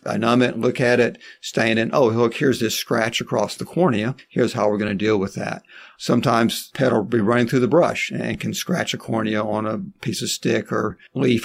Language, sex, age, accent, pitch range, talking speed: English, male, 50-69, American, 110-125 Hz, 230 wpm